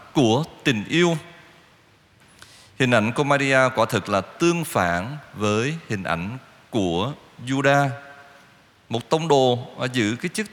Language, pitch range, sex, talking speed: Vietnamese, 110-160 Hz, male, 130 wpm